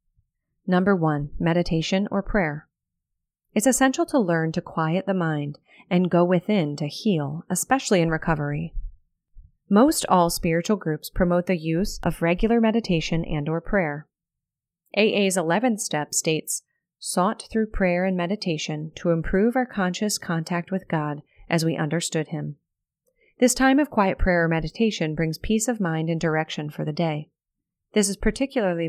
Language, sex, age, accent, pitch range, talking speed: English, female, 30-49, American, 155-200 Hz, 150 wpm